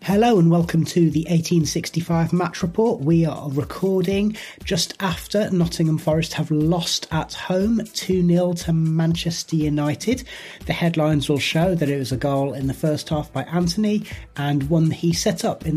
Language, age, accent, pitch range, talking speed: English, 30-49, British, 145-180 Hz, 170 wpm